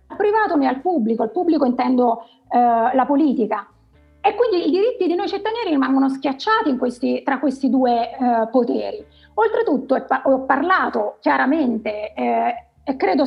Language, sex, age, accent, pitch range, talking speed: Italian, female, 30-49, native, 265-380 Hz, 150 wpm